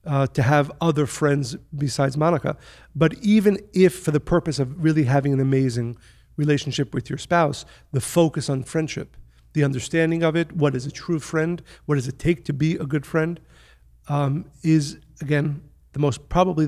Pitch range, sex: 140-165 Hz, male